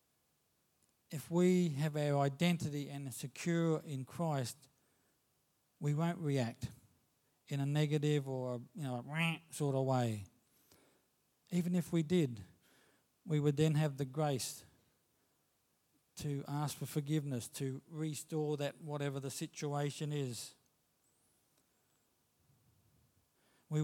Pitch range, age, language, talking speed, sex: 135-155 Hz, 50-69, English, 110 wpm, male